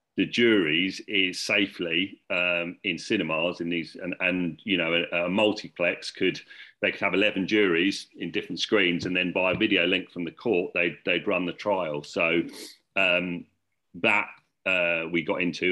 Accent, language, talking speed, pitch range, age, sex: British, English, 170 wpm, 85-95 Hz, 40-59, male